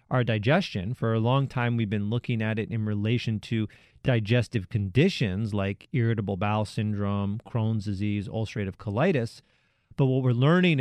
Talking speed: 155 wpm